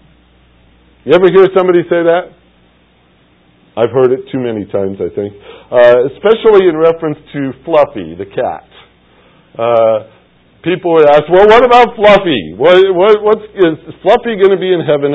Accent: American